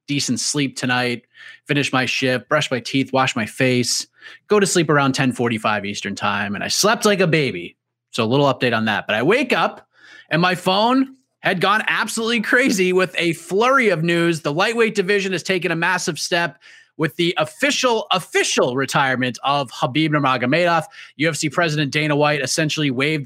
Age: 30-49